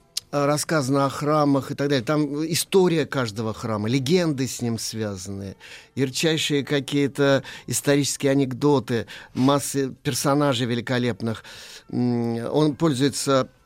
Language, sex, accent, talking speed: Russian, male, native, 100 wpm